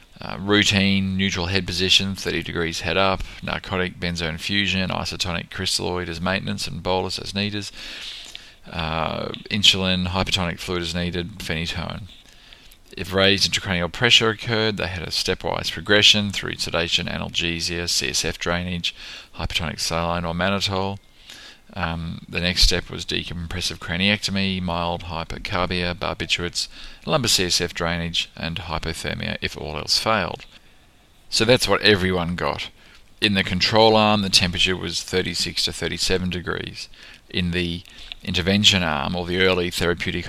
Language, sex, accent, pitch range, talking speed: English, male, Australian, 85-95 Hz, 135 wpm